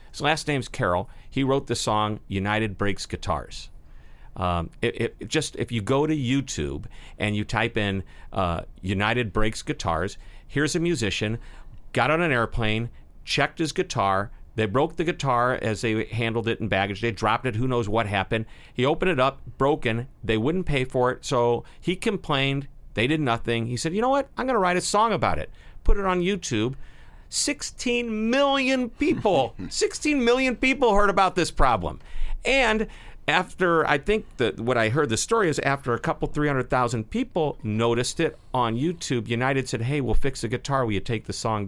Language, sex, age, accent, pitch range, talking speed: English, male, 50-69, American, 110-155 Hz, 190 wpm